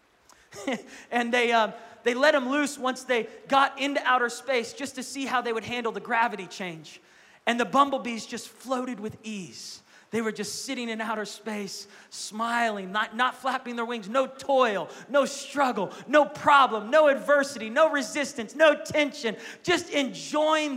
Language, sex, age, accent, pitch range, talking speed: English, male, 30-49, American, 195-260 Hz, 165 wpm